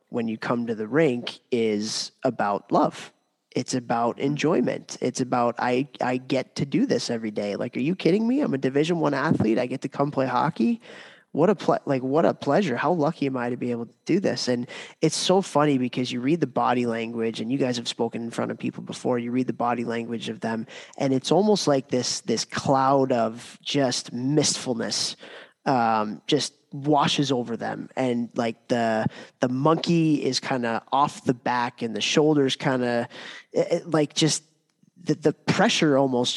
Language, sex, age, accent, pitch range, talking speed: English, male, 20-39, American, 120-150 Hz, 195 wpm